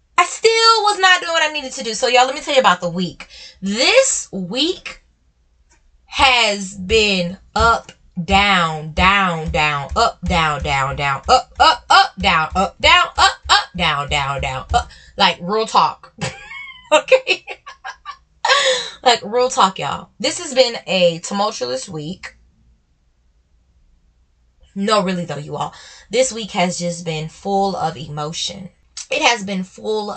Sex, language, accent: female, English, American